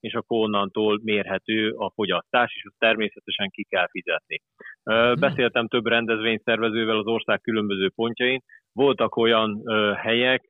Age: 30-49